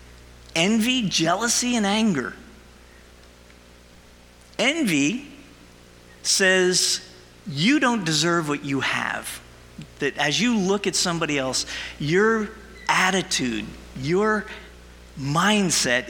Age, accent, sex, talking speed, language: 50-69, American, male, 85 wpm, English